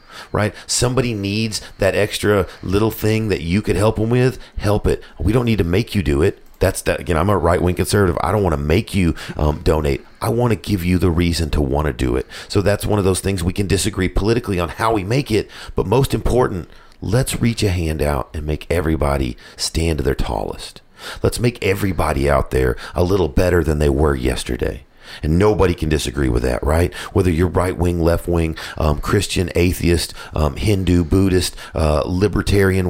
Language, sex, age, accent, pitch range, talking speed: English, male, 40-59, American, 70-100 Hz, 205 wpm